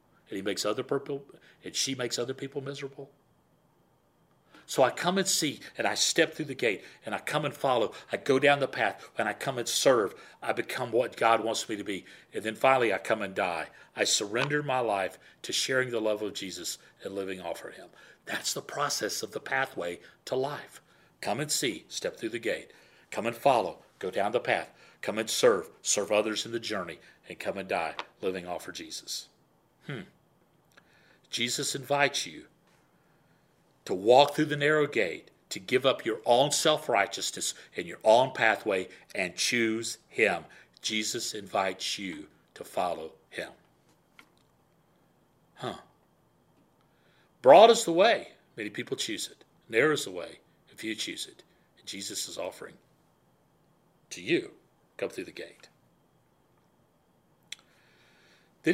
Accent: American